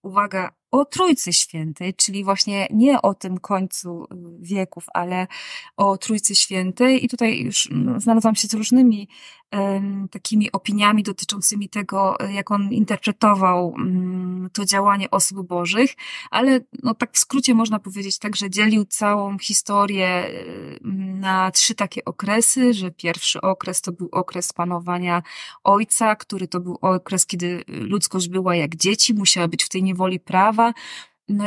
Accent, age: native, 20-39